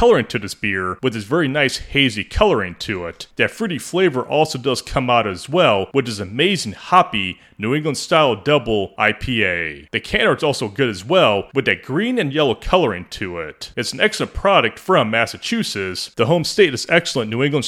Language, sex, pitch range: English, male, 100-150 Hz